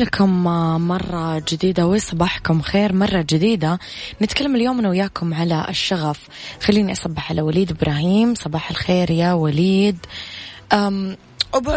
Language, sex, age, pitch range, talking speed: Arabic, female, 20-39, 165-205 Hz, 115 wpm